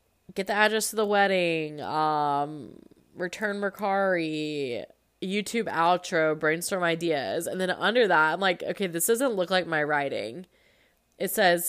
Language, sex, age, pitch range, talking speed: English, female, 20-39, 150-205 Hz, 145 wpm